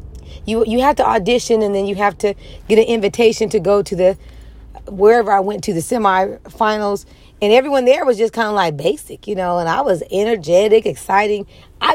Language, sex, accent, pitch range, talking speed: English, female, American, 195-235 Hz, 200 wpm